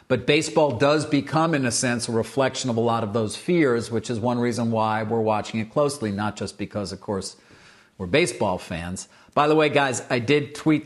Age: 50-69